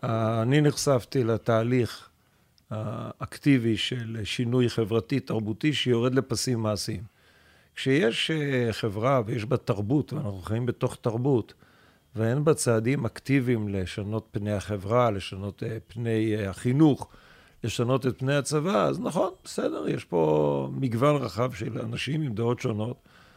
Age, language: 50-69, Hebrew